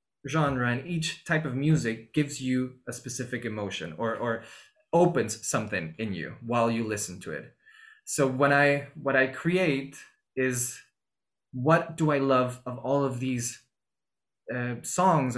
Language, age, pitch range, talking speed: English, 20-39, 120-145 Hz, 150 wpm